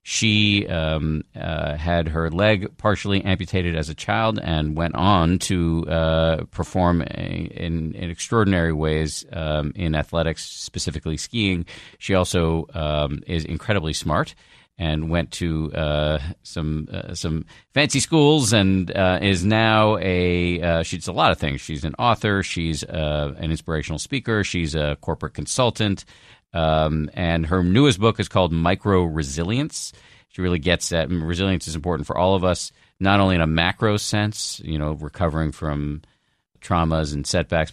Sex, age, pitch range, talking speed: male, 50-69, 80-95 Hz, 155 wpm